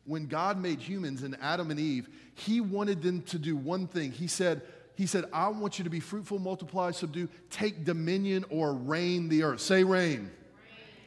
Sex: male